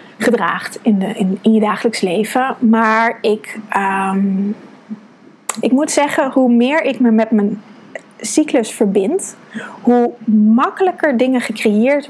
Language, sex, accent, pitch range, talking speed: Dutch, female, Dutch, 215-245 Hz, 130 wpm